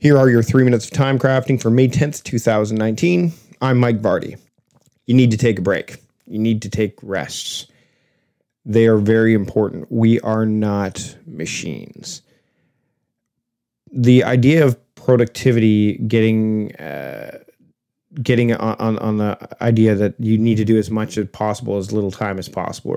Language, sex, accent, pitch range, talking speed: English, male, American, 105-125 Hz, 155 wpm